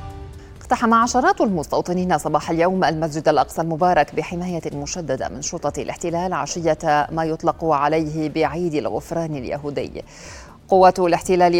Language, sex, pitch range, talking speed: Arabic, female, 145-170 Hz, 115 wpm